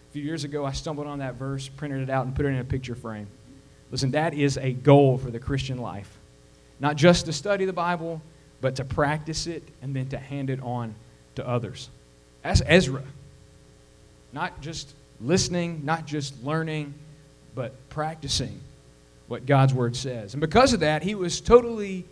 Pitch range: 130-155 Hz